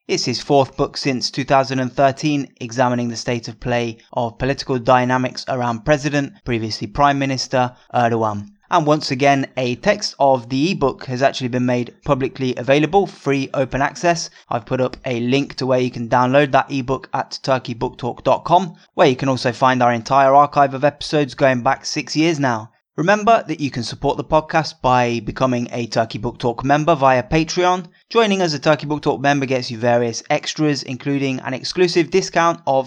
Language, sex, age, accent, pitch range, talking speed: English, male, 20-39, British, 125-150 Hz, 180 wpm